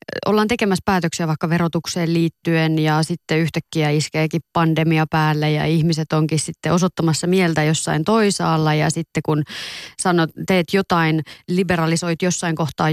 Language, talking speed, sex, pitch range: Finnish, 135 wpm, female, 155-185 Hz